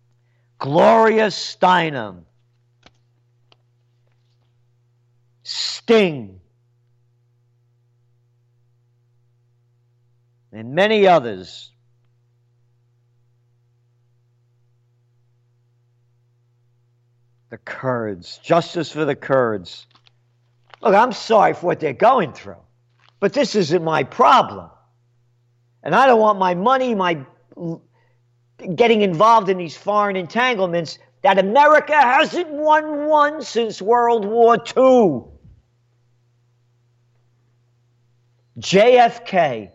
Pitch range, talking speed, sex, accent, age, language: 120-175 Hz, 70 wpm, male, American, 50-69, English